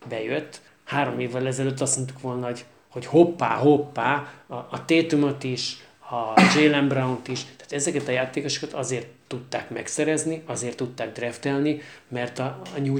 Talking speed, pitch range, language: 150 wpm, 120-145 Hz, Hungarian